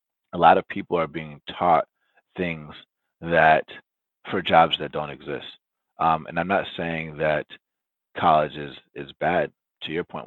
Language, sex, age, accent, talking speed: English, male, 30-49, American, 160 wpm